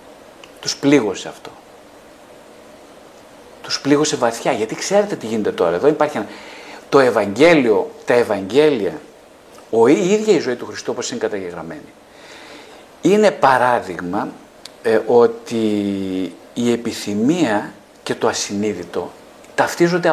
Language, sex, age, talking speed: Greek, male, 50-69, 110 wpm